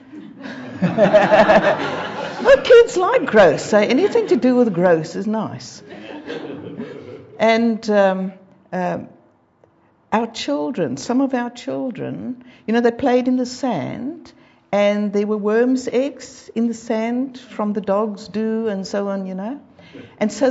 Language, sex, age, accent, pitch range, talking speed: English, female, 60-79, British, 210-260 Hz, 140 wpm